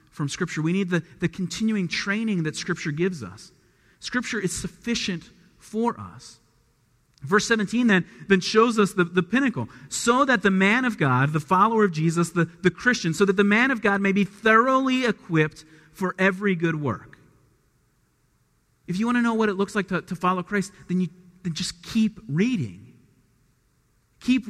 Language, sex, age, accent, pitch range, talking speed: English, male, 40-59, American, 160-225 Hz, 180 wpm